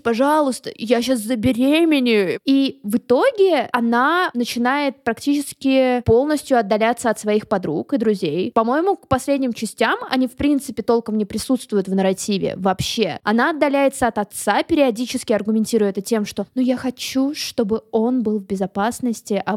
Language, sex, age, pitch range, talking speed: Russian, female, 20-39, 220-275 Hz, 145 wpm